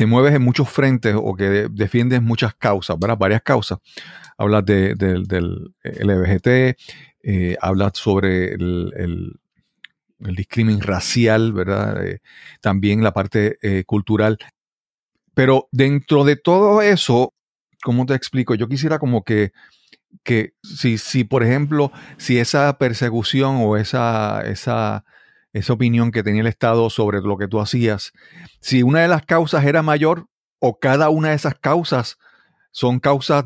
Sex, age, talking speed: male, 40-59, 150 wpm